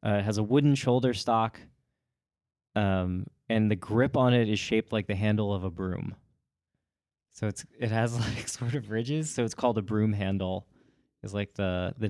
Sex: male